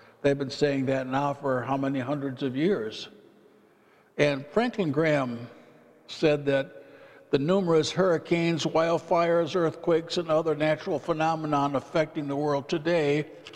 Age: 60-79